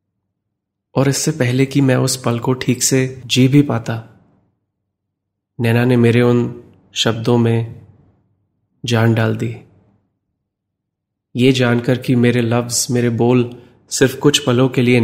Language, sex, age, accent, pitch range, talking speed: Hindi, male, 30-49, native, 100-125 Hz, 135 wpm